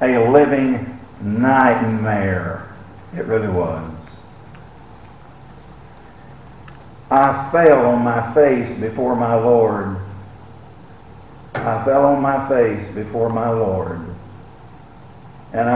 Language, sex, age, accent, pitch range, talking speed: English, male, 50-69, American, 105-135 Hz, 90 wpm